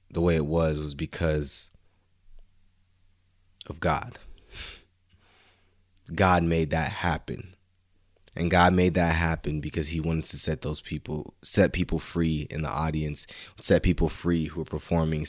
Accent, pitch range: American, 80-90 Hz